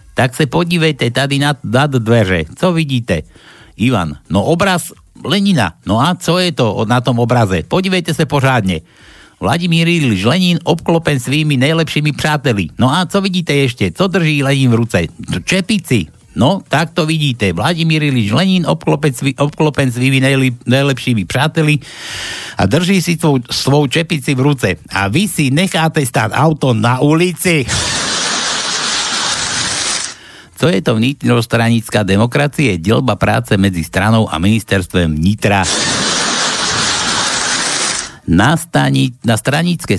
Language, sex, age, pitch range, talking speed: Slovak, male, 60-79, 105-150 Hz, 125 wpm